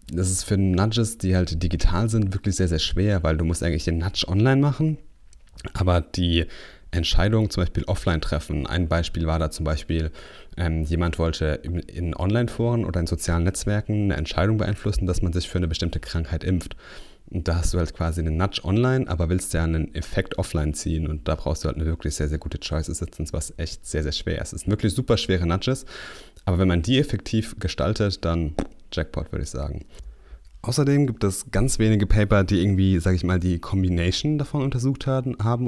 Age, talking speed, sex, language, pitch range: 30-49, 205 wpm, male, German, 85-110 Hz